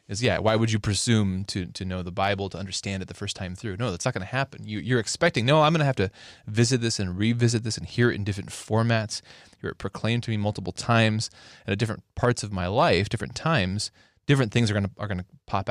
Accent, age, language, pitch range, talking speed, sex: American, 20-39, English, 100-125 Hz, 255 wpm, male